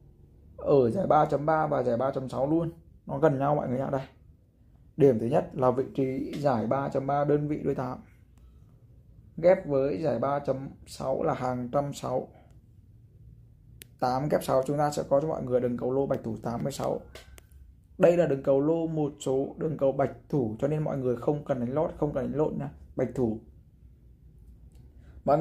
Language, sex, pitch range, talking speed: Vietnamese, male, 120-150 Hz, 180 wpm